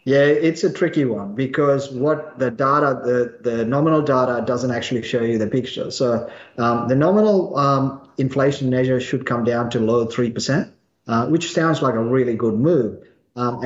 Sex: male